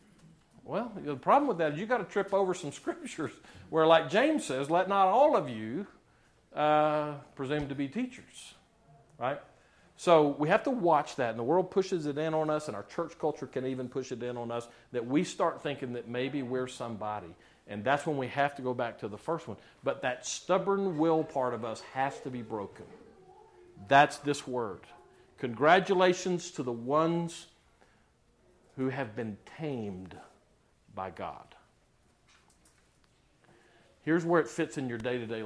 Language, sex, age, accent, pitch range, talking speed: English, male, 50-69, American, 120-160 Hz, 175 wpm